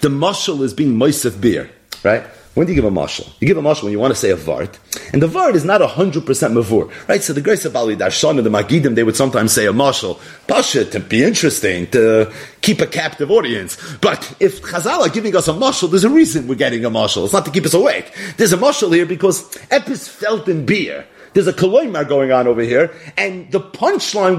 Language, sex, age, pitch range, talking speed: English, male, 40-59, 135-205 Hz, 240 wpm